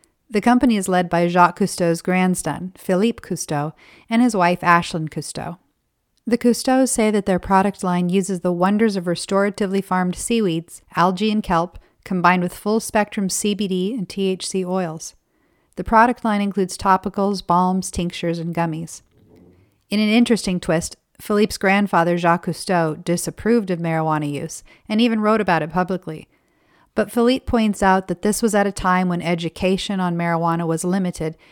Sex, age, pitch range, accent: female, 40-59, 175-205 Hz, American